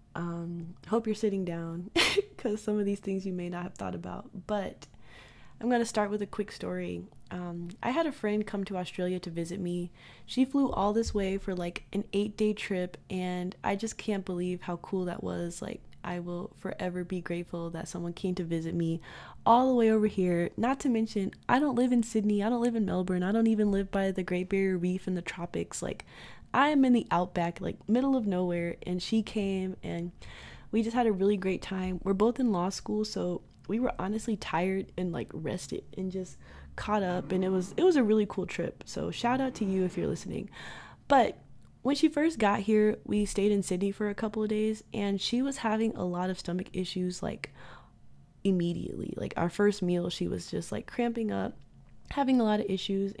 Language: English